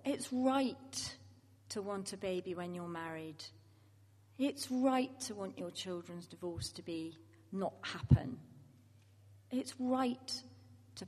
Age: 40-59